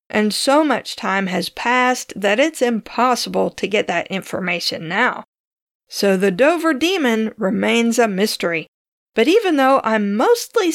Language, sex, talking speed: English, female, 145 wpm